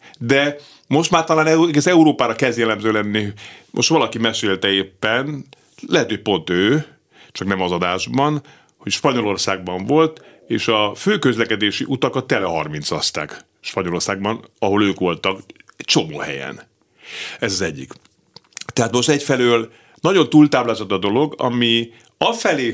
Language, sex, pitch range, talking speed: Hungarian, male, 100-130 Hz, 130 wpm